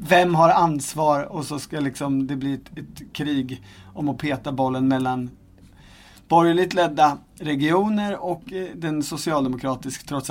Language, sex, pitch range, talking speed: Swedish, male, 135-170 Hz, 135 wpm